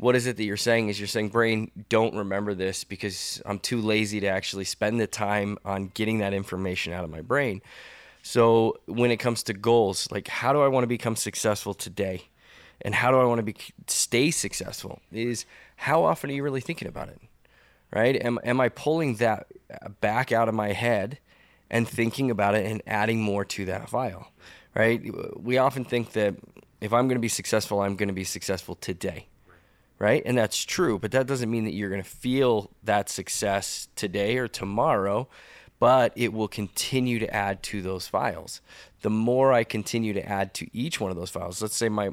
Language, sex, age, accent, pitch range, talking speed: English, male, 20-39, American, 100-120 Hz, 205 wpm